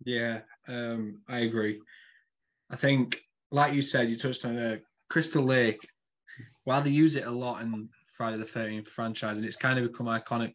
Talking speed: 180 wpm